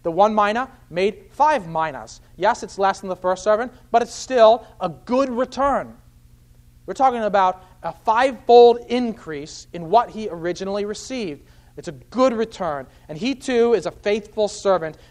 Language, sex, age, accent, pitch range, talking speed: English, male, 40-59, American, 125-205 Hz, 165 wpm